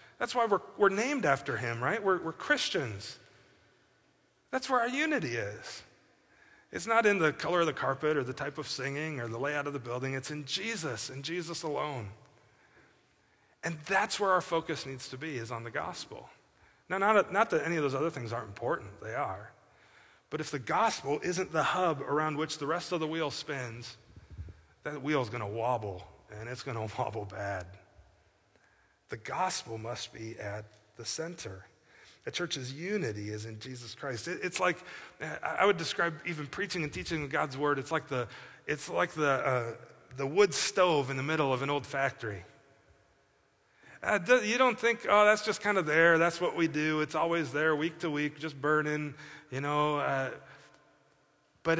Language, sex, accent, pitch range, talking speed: English, male, American, 125-175 Hz, 185 wpm